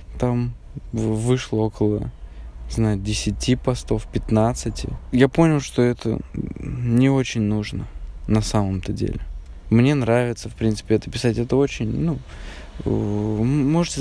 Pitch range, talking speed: 105-125 Hz, 115 wpm